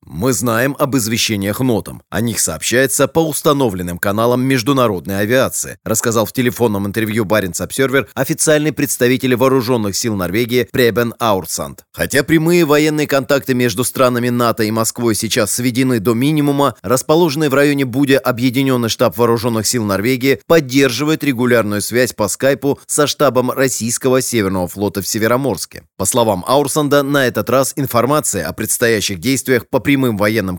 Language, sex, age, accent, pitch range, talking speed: Russian, male, 30-49, native, 110-140 Hz, 145 wpm